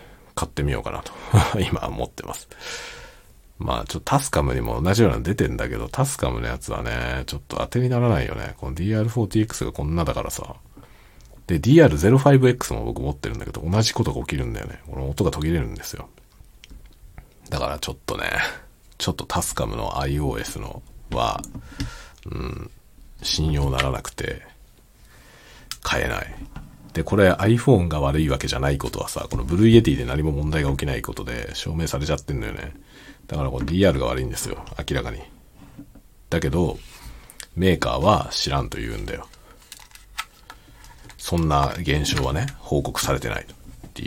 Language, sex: Japanese, male